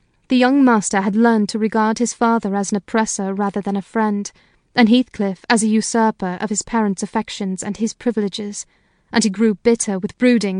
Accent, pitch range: British, 210-235 Hz